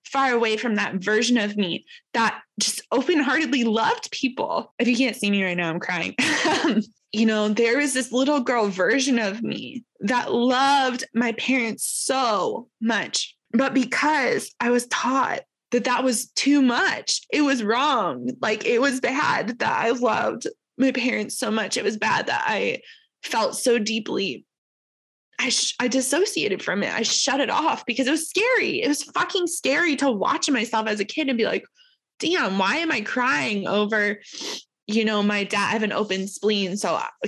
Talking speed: 180 wpm